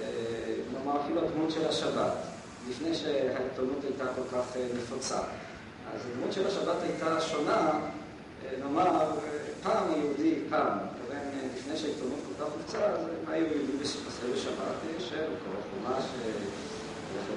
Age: 40-59